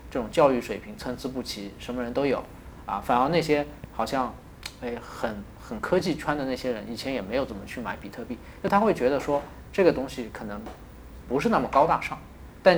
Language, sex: Chinese, male